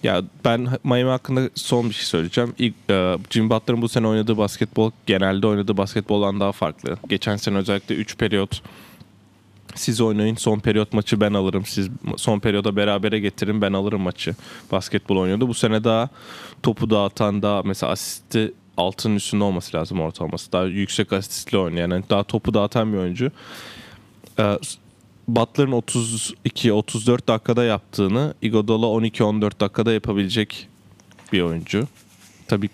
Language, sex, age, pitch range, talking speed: Turkish, male, 20-39, 95-115 Hz, 145 wpm